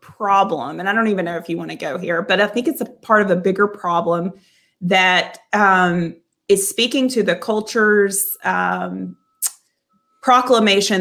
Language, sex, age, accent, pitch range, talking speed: English, female, 30-49, American, 180-210 Hz, 170 wpm